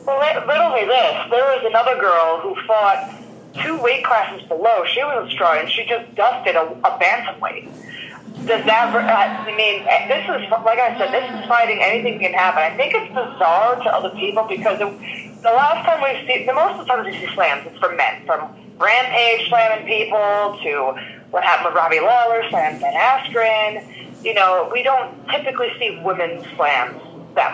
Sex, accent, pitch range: female, American, 210-260 Hz